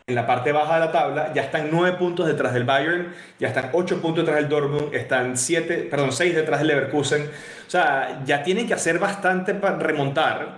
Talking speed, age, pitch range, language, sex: 210 wpm, 30-49, 140-165 Hz, Spanish, male